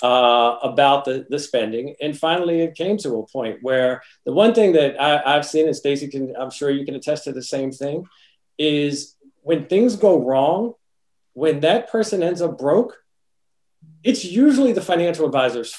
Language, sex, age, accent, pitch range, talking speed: English, male, 40-59, American, 130-160 Hz, 180 wpm